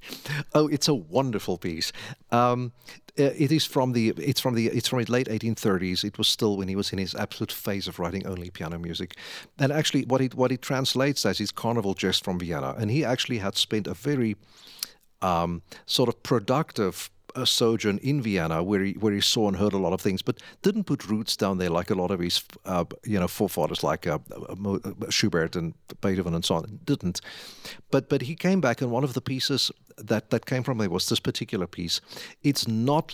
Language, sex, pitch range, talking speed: English, male, 95-130 Hz, 210 wpm